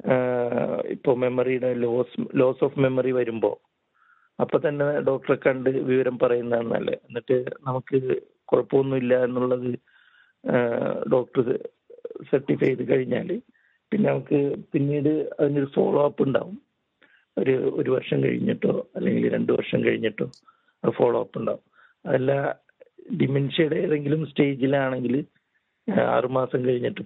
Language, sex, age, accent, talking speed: Malayalam, male, 50-69, native, 95 wpm